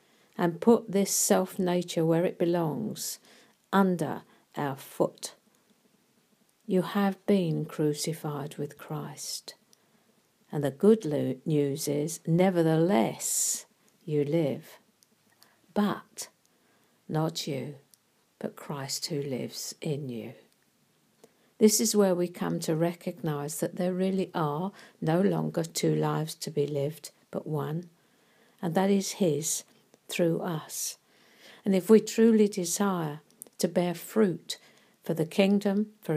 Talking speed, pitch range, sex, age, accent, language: 120 wpm, 155-200 Hz, female, 60-79, British, English